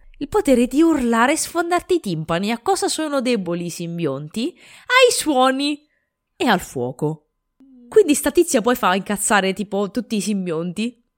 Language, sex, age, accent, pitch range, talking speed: Italian, female, 20-39, native, 180-245 Hz, 150 wpm